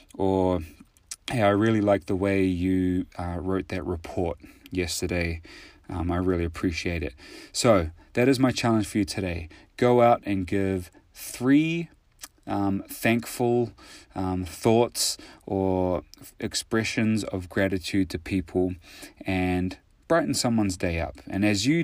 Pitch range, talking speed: 90-105 Hz, 135 wpm